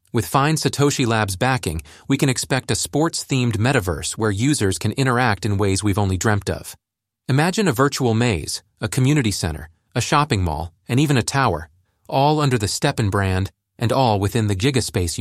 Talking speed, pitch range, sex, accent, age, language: 180 wpm, 100-130 Hz, male, American, 40-59, English